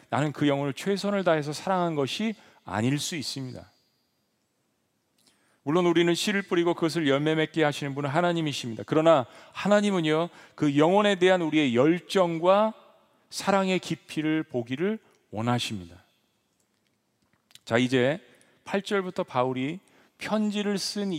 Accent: native